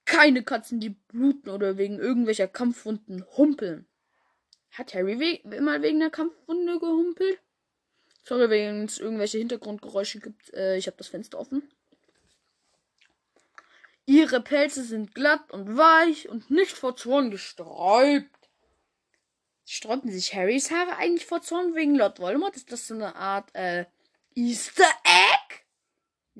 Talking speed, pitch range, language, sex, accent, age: 130 wpm, 210-285 Hz, German, female, German, 10-29